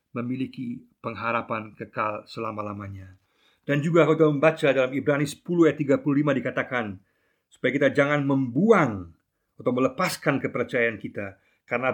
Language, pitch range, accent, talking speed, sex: Indonesian, 105-135 Hz, native, 125 wpm, male